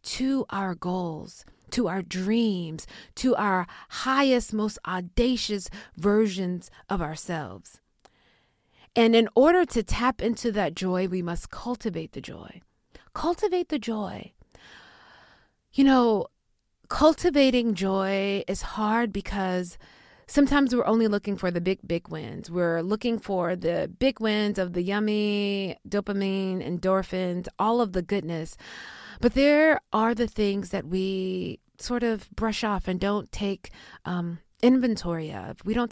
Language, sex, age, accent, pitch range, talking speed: English, female, 30-49, American, 185-235 Hz, 135 wpm